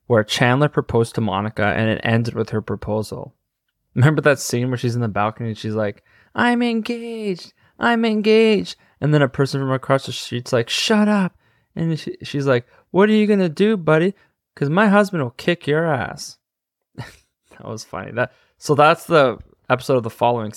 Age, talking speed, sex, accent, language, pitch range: 20-39, 190 wpm, male, American, English, 115-150 Hz